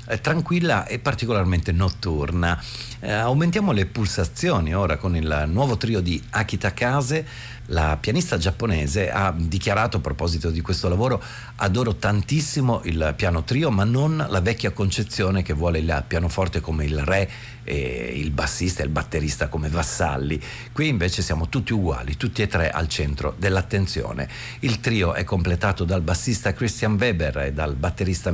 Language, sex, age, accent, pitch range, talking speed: Italian, male, 50-69, native, 80-115 Hz, 155 wpm